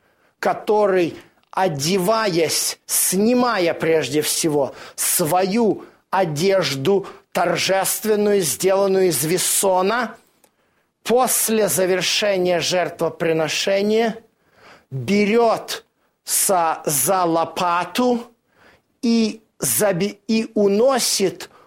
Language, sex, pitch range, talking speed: Russian, male, 170-210 Hz, 55 wpm